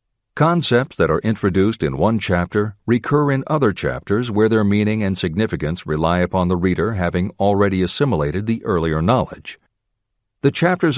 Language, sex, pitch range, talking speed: English, male, 95-120 Hz, 155 wpm